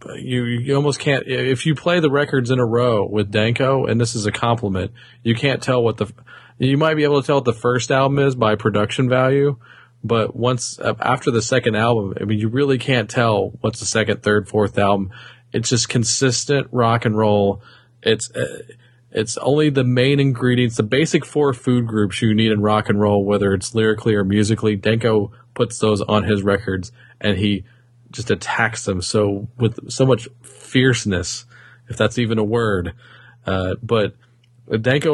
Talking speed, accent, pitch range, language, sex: 185 wpm, American, 105-125 Hz, English, male